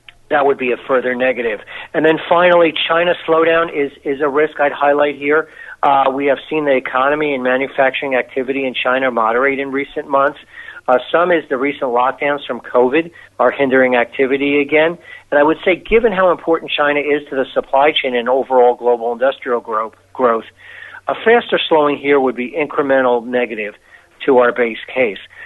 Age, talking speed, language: 50-69, 180 wpm, English